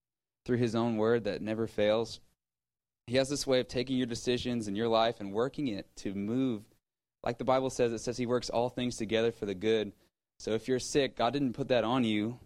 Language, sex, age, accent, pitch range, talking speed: English, male, 20-39, American, 105-125 Hz, 225 wpm